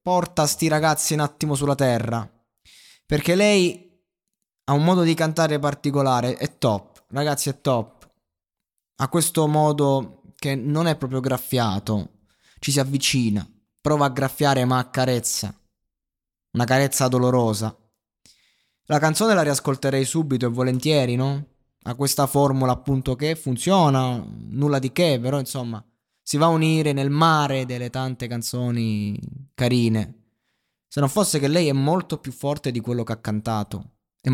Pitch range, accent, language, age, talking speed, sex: 115-145 Hz, native, Italian, 20-39, 145 wpm, male